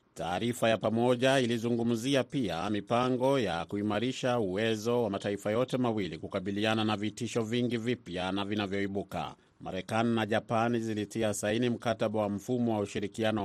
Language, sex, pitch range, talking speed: Swahili, male, 105-120 Hz, 135 wpm